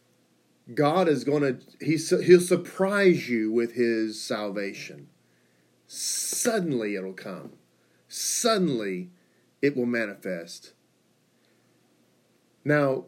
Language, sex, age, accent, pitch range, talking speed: English, male, 40-59, American, 115-155 Hz, 85 wpm